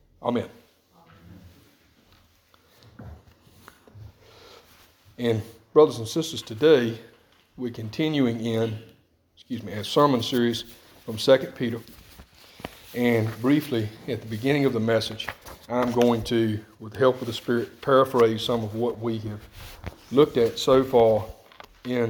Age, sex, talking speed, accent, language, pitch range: 40-59, male, 120 wpm, American, English, 110-125 Hz